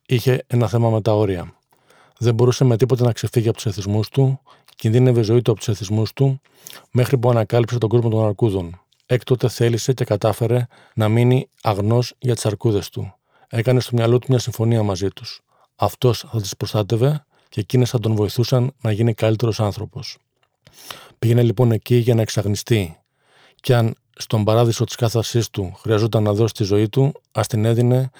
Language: Greek